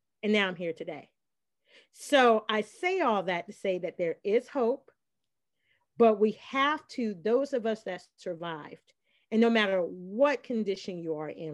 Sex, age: female, 40-59